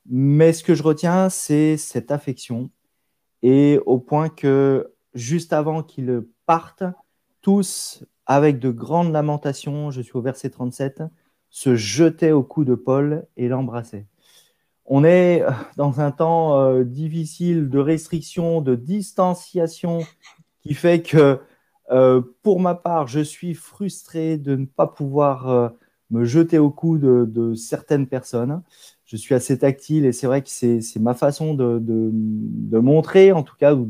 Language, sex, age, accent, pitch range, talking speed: French, male, 30-49, French, 130-165 Hz, 155 wpm